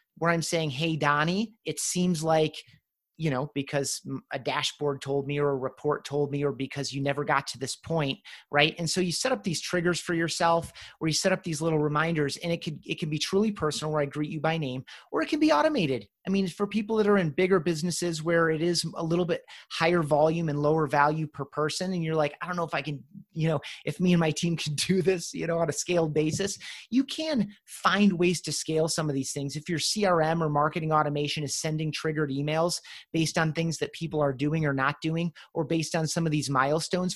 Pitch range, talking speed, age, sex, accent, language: 145-180 Hz, 240 wpm, 30-49, male, American, English